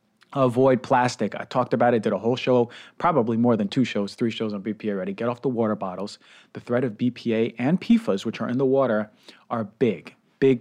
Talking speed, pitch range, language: 220 wpm, 115-135 Hz, English